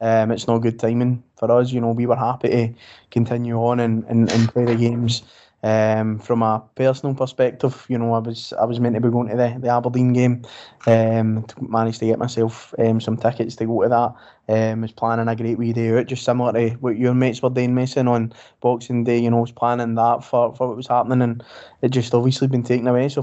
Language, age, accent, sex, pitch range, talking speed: English, 20-39, British, male, 115-130 Hz, 240 wpm